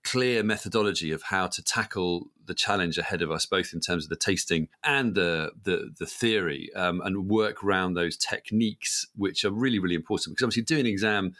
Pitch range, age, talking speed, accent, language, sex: 90-125 Hz, 40-59, 200 wpm, British, English, male